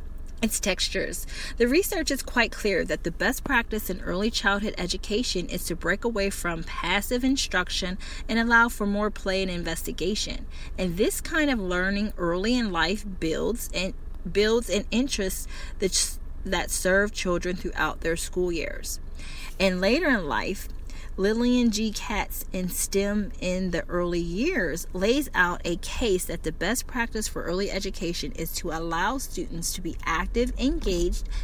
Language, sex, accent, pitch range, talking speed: English, female, American, 175-215 Hz, 155 wpm